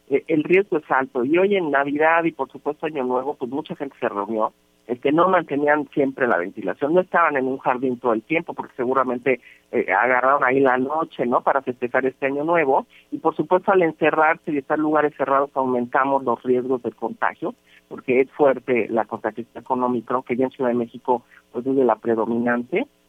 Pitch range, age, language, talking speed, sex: 130-175 Hz, 50-69, Spanish, 205 wpm, male